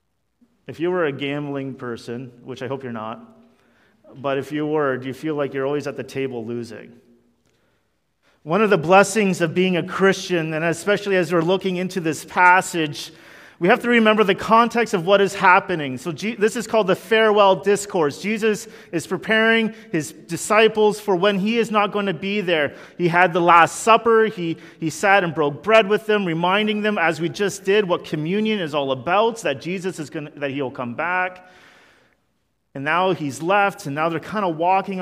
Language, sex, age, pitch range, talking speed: English, male, 40-59, 140-195 Hz, 200 wpm